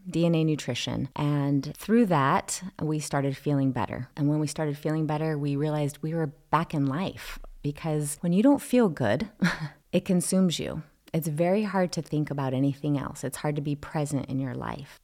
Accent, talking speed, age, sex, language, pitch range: American, 190 wpm, 30-49, female, English, 145-170 Hz